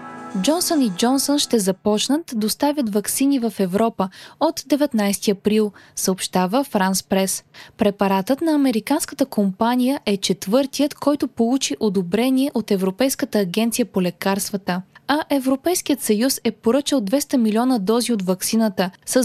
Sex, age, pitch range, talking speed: female, 20-39, 200-270 Hz, 130 wpm